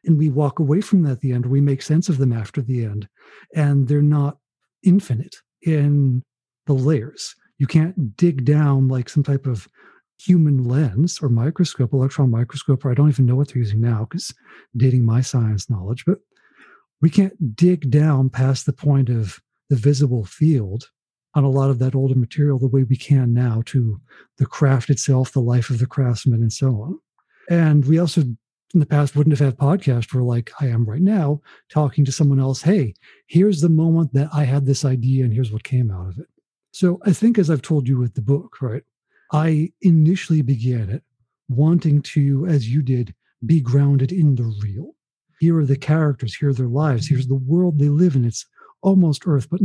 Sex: male